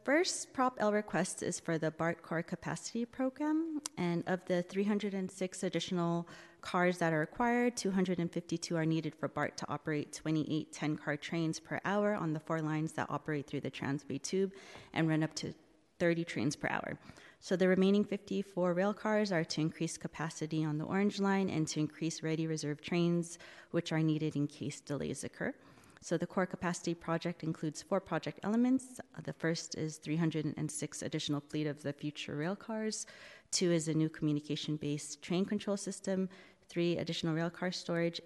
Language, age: English, 30-49